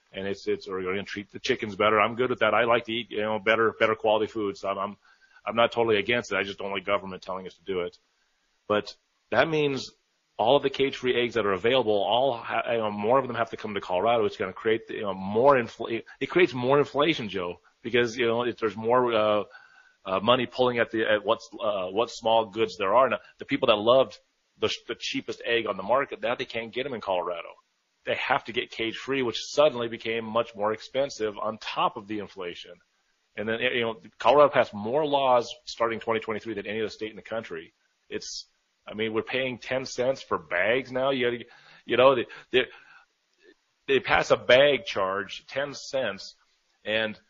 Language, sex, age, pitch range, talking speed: English, male, 30-49, 110-130 Hz, 220 wpm